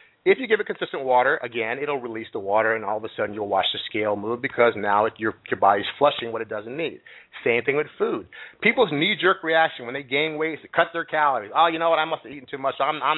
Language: English